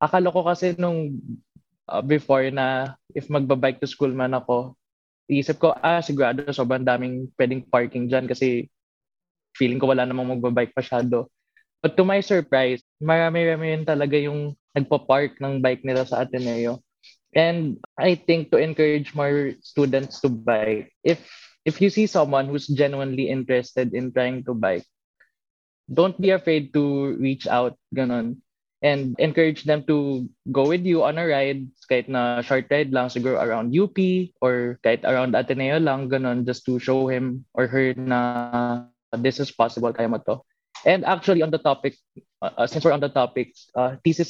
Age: 20-39